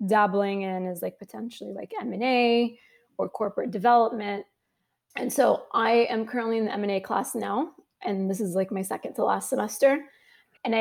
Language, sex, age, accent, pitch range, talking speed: English, female, 20-39, American, 190-235 Hz, 165 wpm